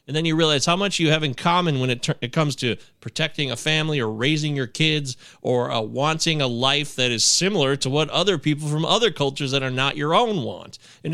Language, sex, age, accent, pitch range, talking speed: English, male, 30-49, American, 130-170 Hz, 245 wpm